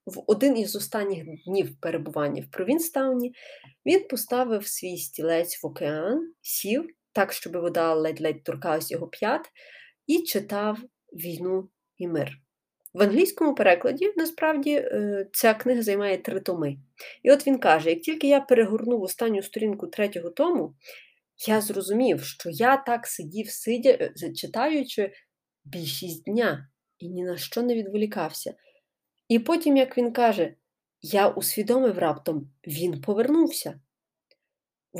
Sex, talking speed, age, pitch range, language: female, 130 wpm, 30-49, 175-255 Hz, Ukrainian